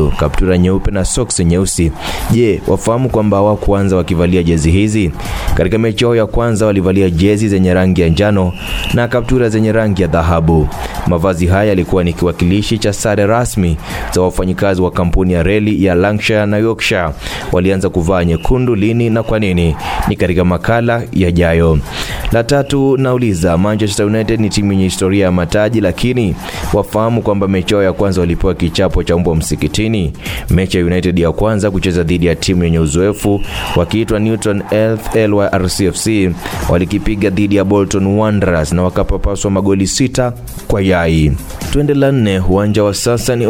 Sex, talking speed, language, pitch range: male, 150 wpm, Swahili, 90-110 Hz